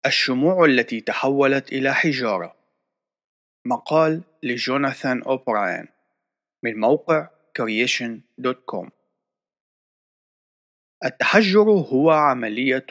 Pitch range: 115-155 Hz